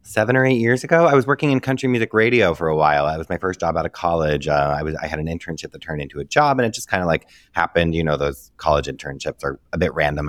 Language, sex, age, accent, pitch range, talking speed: English, male, 20-39, American, 85-110 Hz, 290 wpm